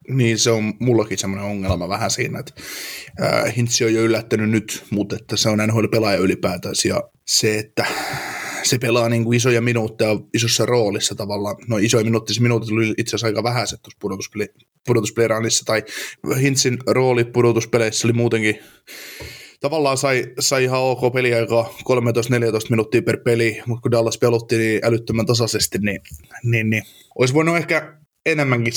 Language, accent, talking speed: Finnish, native, 150 wpm